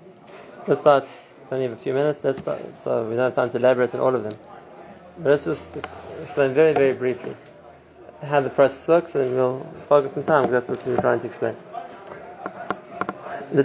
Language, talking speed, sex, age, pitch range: English, 195 wpm, male, 20-39, 130-155 Hz